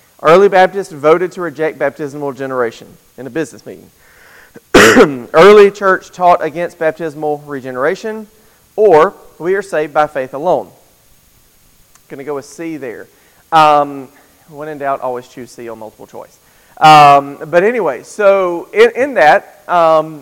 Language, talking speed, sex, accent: English, 140 wpm, male, American